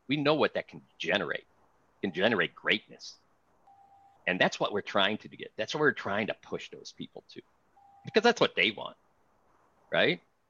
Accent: American